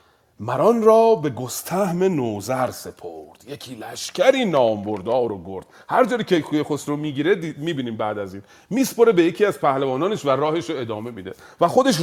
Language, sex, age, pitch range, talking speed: Persian, male, 40-59, 125-185 Hz, 170 wpm